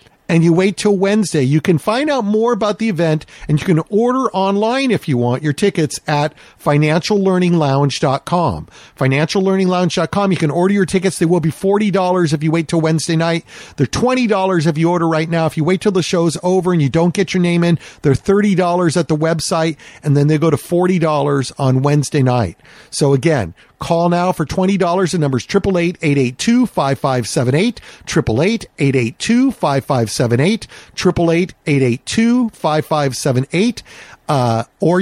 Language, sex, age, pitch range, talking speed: English, male, 50-69, 145-185 Hz, 150 wpm